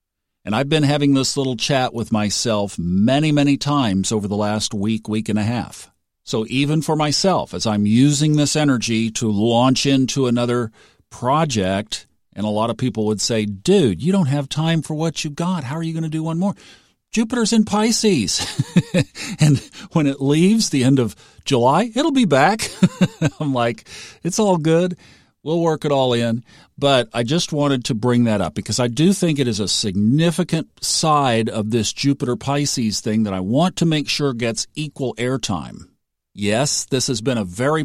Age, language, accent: 50-69, English, American